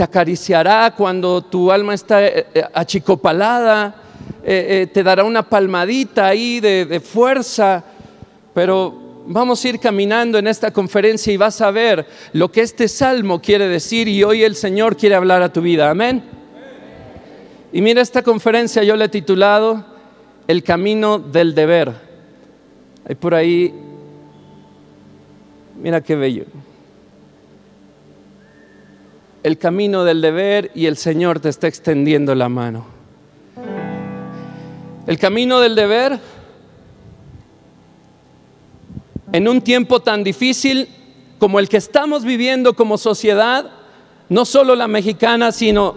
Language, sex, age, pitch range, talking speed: Spanish, male, 40-59, 175-235 Hz, 125 wpm